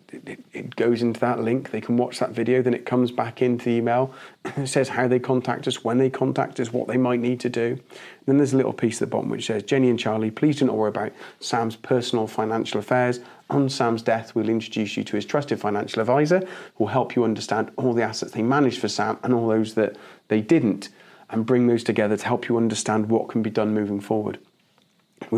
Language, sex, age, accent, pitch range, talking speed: English, male, 40-59, British, 110-130 Hz, 230 wpm